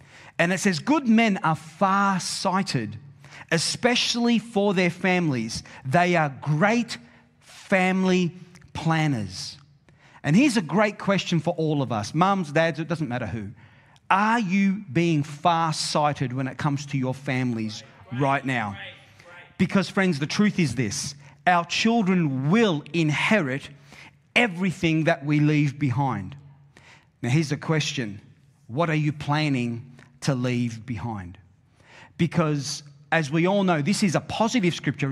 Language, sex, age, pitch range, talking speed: English, male, 40-59, 140-185 Hz, 135 wpm